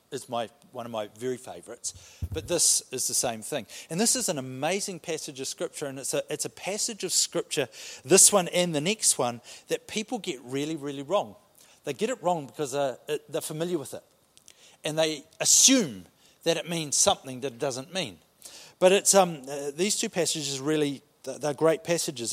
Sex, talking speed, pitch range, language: male, 195 wpm, 140-205 Hz, English